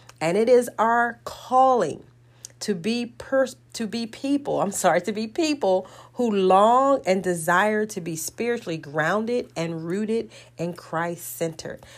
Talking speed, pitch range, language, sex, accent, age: 140 wpm, 160-220 Hz, English, female, American, 40-59